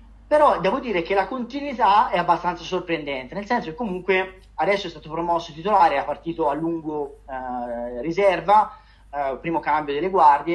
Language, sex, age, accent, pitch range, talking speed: Italian, male, 30-49, native, 165-200 Hz, 165 wpm